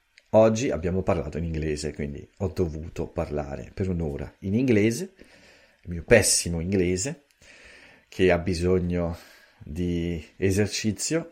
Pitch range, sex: 80-100 Hz, male